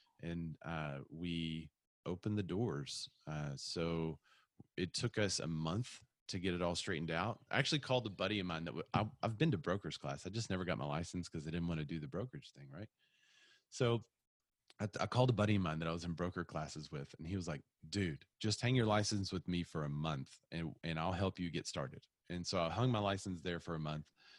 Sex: male